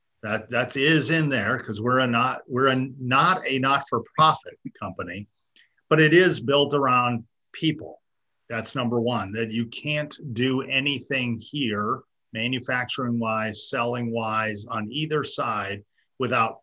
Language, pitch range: English, 105-125 Hz